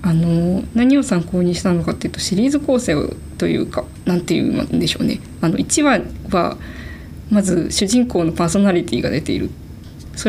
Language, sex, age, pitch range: Japanese, female, 20-39, 165-205 Hz